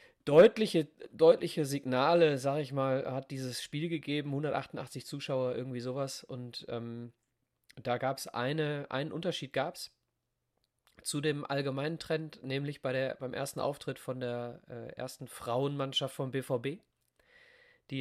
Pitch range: 130-160 Hz